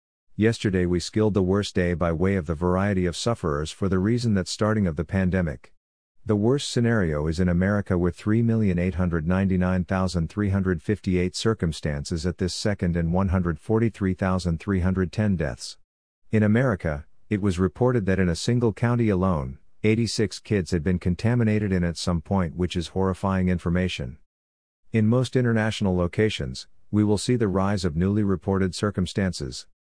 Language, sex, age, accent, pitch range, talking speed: English, male, 50-69, American, 90-105 Hz, 180 wpm